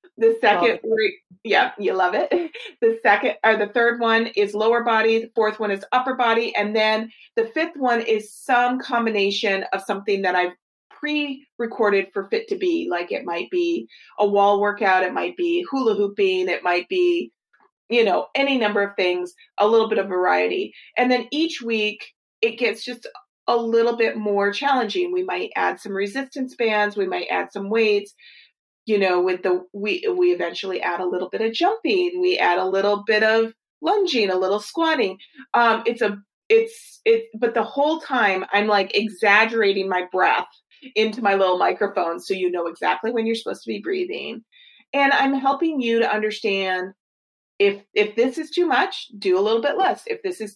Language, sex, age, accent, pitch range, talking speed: English, female, 30-49, American, 200-275 Hz, 190 wpm